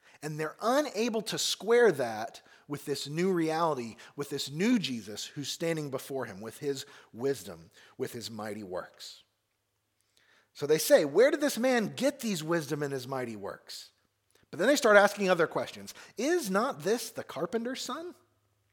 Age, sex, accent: 40-59, male, American